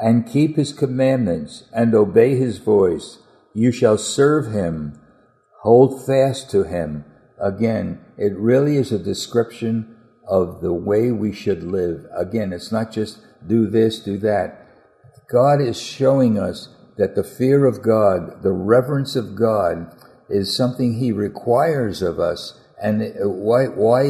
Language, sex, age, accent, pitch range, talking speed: English, male, 60-79, American, 100-125 Hz, 145 wpm